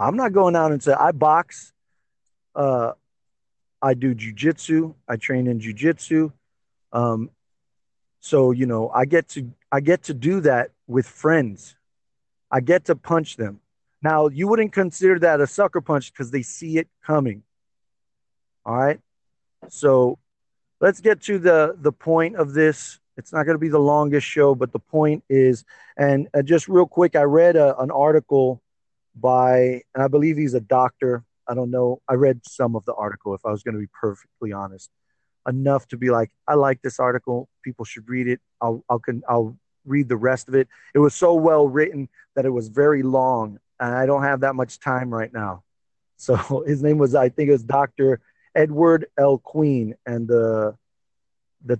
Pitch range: 120-150 Hz